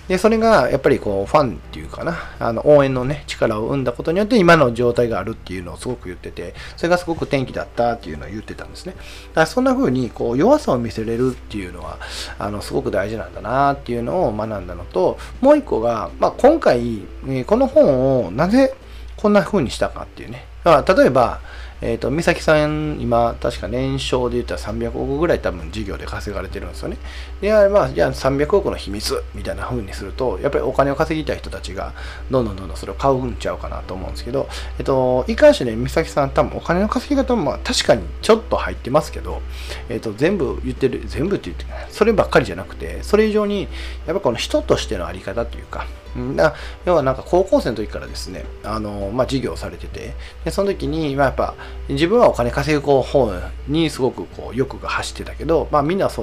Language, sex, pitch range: Japanese, male, 100-170 Hz